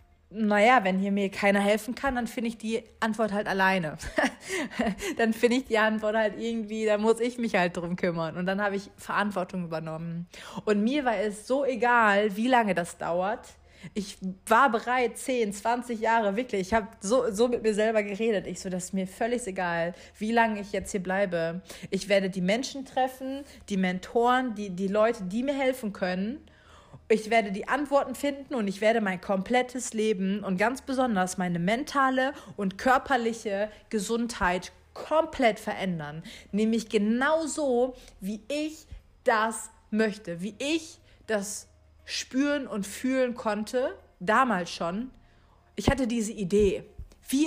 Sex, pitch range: female, 195-245 Hz